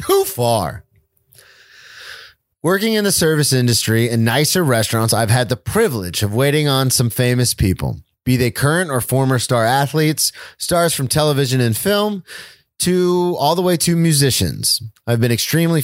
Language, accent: English, American